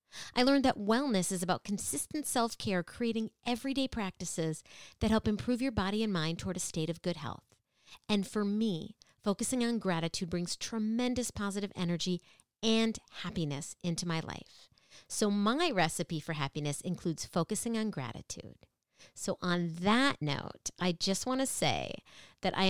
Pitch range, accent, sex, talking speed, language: 175-230 Hz, American, female, 160 wpm, English